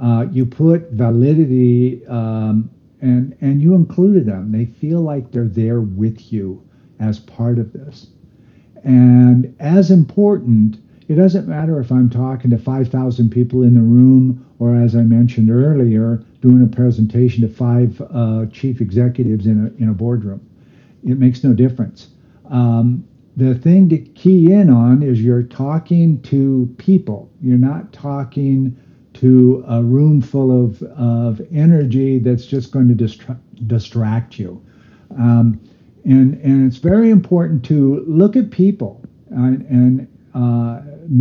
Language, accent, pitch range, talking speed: English, American, 120-150 Hz, 145 wpm